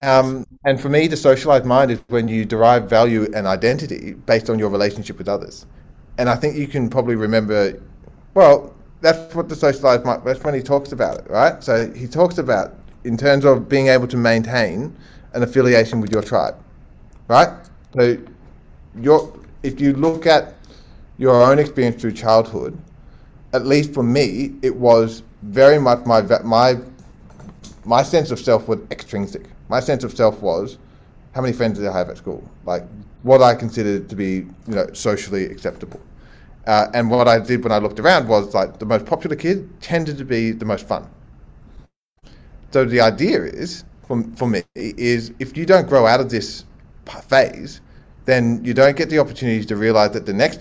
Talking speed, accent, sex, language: 185 wpm, Australian, male, English